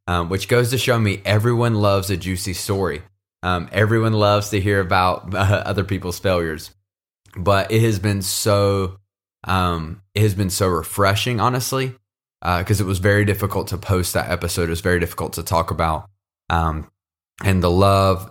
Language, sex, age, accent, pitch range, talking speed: English, male, 20-39, American, 85-100 Hz, 175 wpm